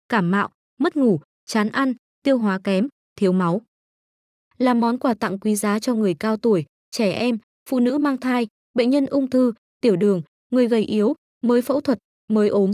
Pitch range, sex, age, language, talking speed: 205-255 Hz, female, 20-39, Vietnamese, 195 wpm